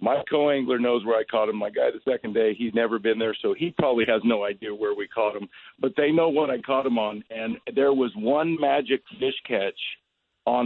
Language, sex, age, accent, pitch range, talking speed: English, male, 50-69, American, 110-150 Hz, 235 wpm